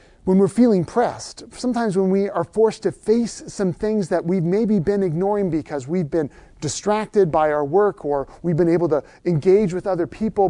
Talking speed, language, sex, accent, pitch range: 195 wpm, English, male, American, 160-200 Hz